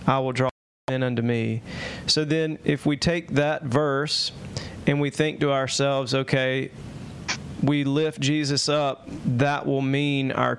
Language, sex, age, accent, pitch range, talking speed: English, male, 30-49, American, 125-145 Hz, 155 wpm